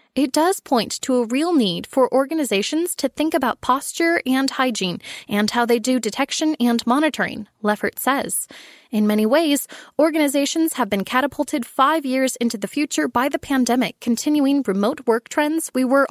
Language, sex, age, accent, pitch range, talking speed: English, female, 20-39, American, 225-300 Hz, 170 wpm